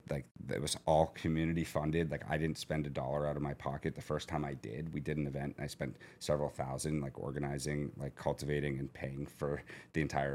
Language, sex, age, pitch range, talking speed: English, male, 30-49, 70-80 Hz, 220 wpm